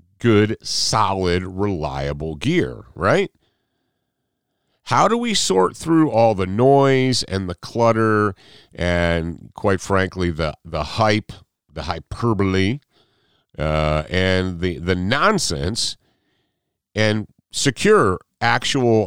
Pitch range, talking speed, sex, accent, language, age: 90-125 Hz, 100 wpm, male, American, English, 50-69